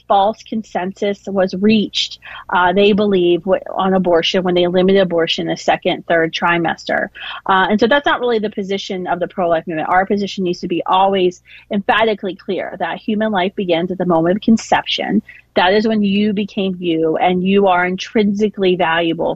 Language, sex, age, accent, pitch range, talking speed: English, female, 30-49, American, 175-205 Hz, 175 wpm